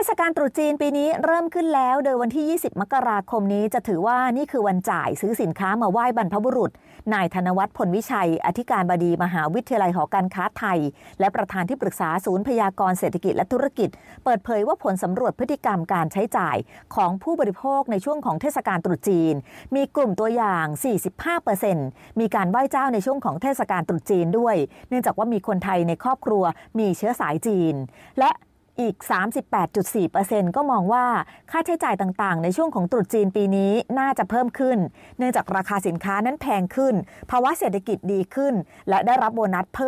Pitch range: 185-255 Hz